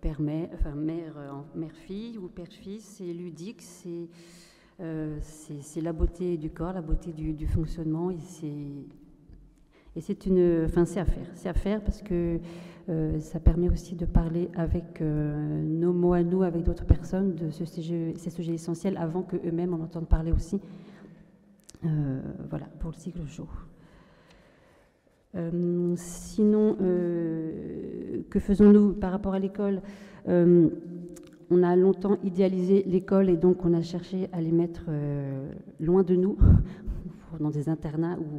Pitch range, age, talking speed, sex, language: 160-185 Hz, 40-59, 165 wpm, female, French